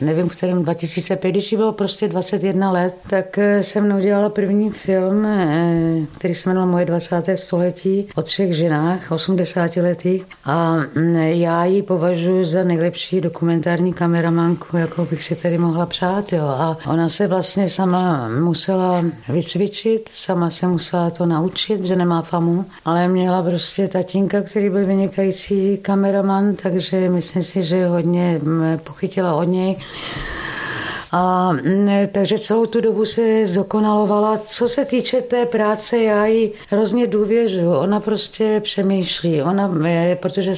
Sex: female